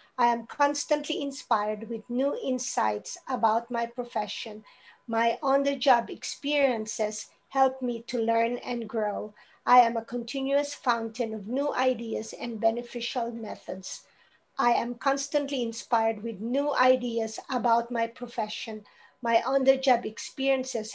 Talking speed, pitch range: 135 wpm, 230-275 Hz